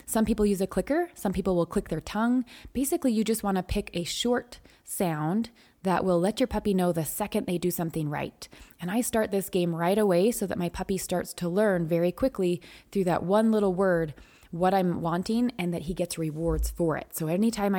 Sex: female